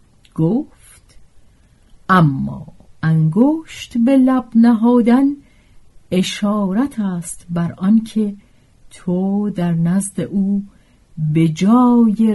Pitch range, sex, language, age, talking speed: 155-235 Hz, female, Persian, 50-69, 75 wpm